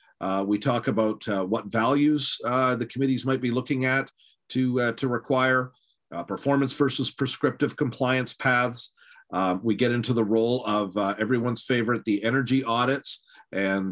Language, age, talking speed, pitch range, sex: English, 50-69, 165 wpm, 105-125 Hz, male